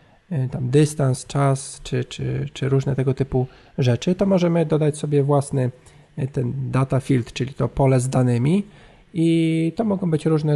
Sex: male